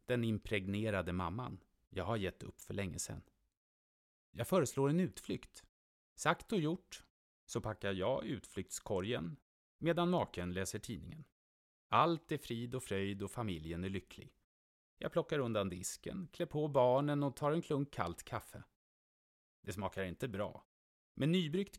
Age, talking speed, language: 30-49, 145 wpm, Swedish